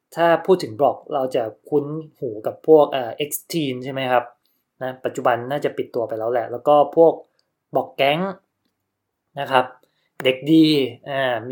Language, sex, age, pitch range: Thai, male, 20-39, 125-150 Hz